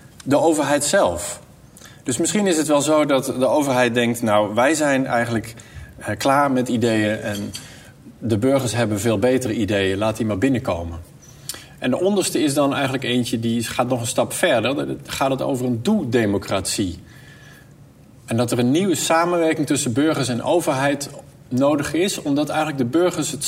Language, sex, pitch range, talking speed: Dutch, male, 115-140 Hz, 170 wpm